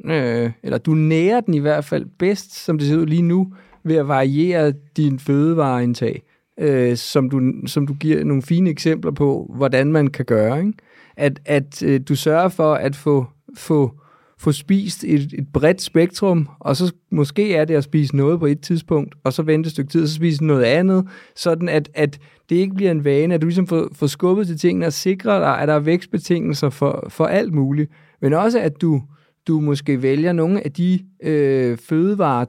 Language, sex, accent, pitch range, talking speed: Danish, male, native, 140-175 Hz, 205 wpm